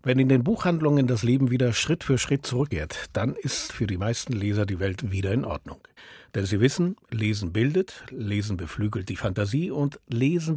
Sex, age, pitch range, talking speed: male, 50-69, 115-150 Hz, 185 wpm